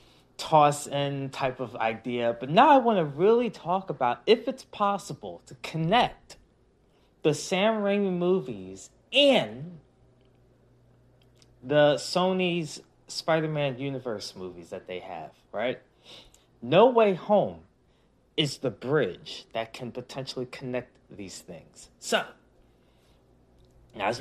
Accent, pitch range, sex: American, 125-195 Hz, male